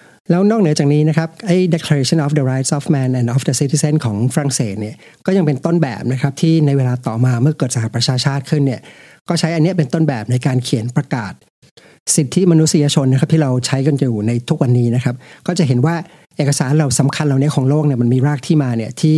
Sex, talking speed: male, 40 wpm